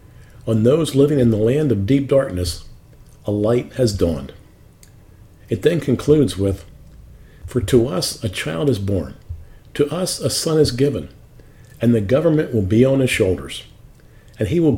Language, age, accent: English, 50-69, American